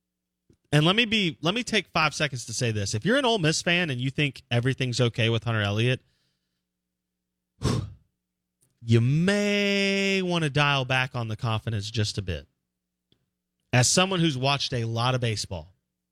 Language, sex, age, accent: English, male, 30-49, American